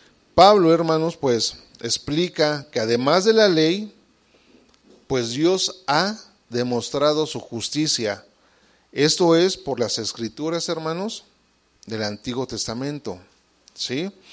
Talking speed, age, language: 105 wpm, 40-59, English